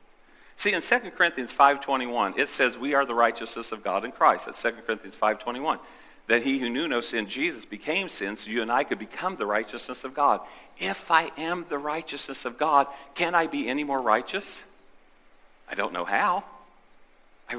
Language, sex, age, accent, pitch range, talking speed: English, male, 50-69, American, 120-160 Hz, 190 wpm